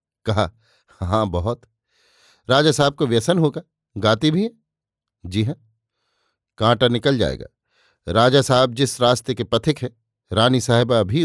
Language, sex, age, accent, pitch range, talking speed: Hindi, male, 50-69, native, 115-135 Hz, 140 wpm